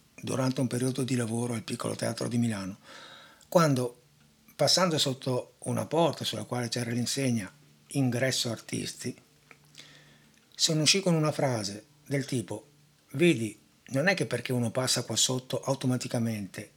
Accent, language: native, Italian